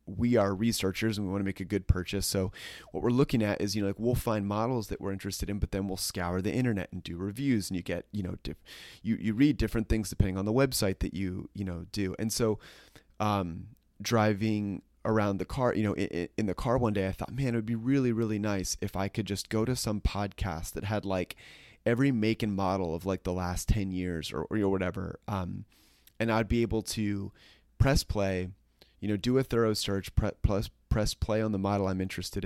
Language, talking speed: English, 235 wpm